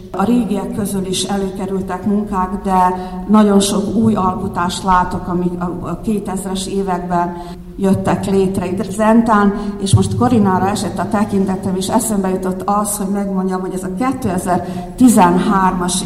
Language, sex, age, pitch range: Hungarian, female, 50-69, 185-205 Hz